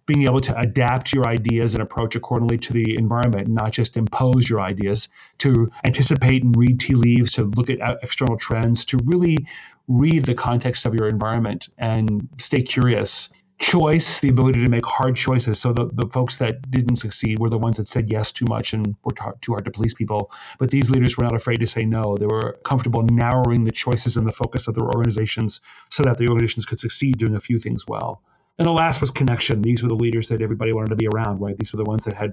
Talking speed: 225 wpm